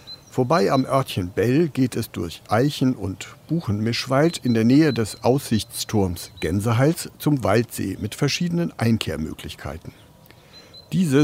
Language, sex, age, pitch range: German, male, 60-79, 110-140 Hz